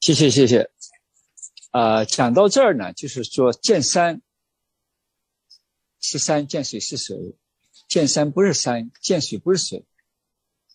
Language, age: Chinese, 50-69